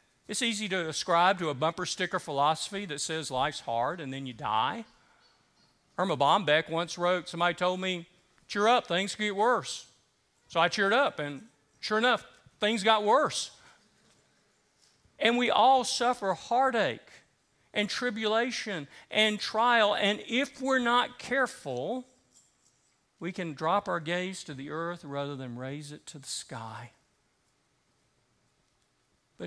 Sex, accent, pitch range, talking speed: male, American, 155-215 Hz, 140 wpm